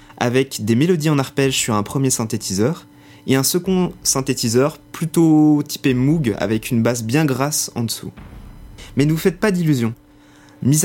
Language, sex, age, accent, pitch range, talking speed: French, male, 20-39, French, 120-150 Hz, 165 wpm